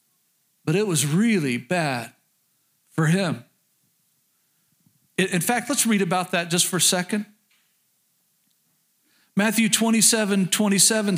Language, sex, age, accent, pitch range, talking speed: English, male, 50-69, American, 180-225 Hz, 105 wpm